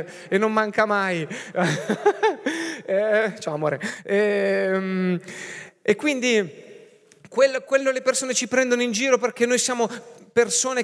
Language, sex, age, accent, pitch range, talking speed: Italian, male, 30-49, native, 160-225 Hz, 120 wpm